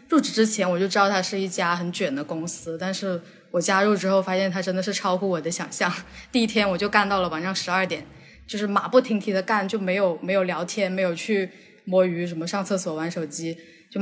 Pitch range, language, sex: 175-210 Hz, Chinese, female